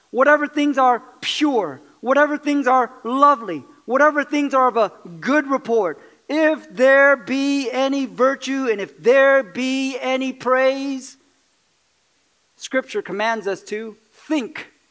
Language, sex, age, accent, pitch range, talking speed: English, male, 40-59, American, 210-270 Hz, 125 wpm